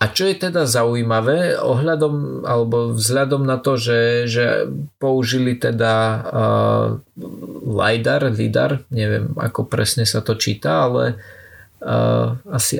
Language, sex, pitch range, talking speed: Slovak, male, 110-125 Hz, 120 wpm